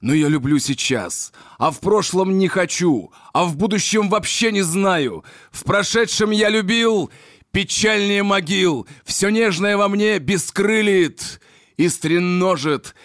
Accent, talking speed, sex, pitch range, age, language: native, 130 wpm, male, 150-195 Hz, 30-49, Russian